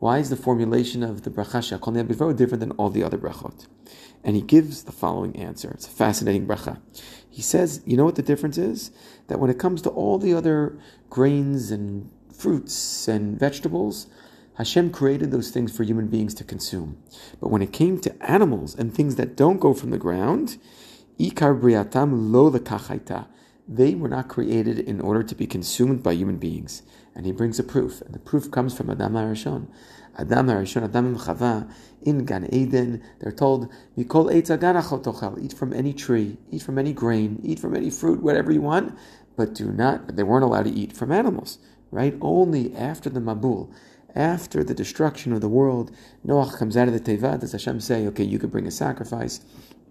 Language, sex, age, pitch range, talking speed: English, male, 40-59, 110-140 Hz, 190 wpm